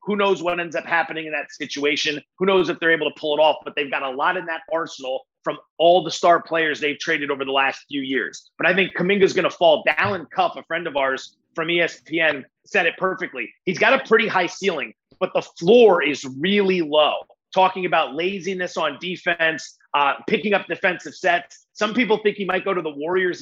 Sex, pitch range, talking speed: male, 160-200 Hz, 225 wpm